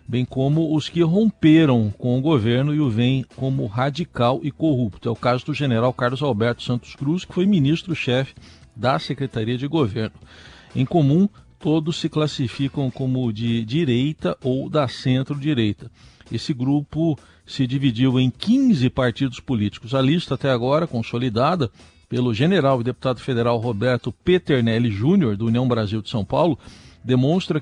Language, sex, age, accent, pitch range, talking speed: Portuguese, male, 50-69, Brazilian, 120-155 Hz, 150 wpm